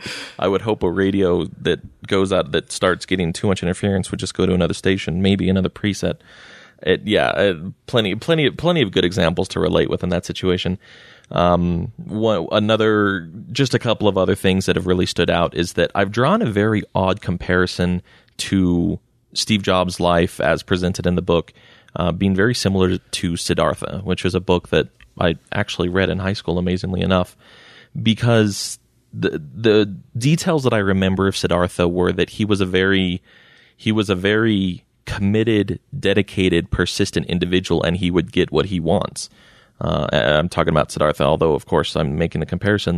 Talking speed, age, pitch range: 175 wpm, 30-49, 90-105 Hz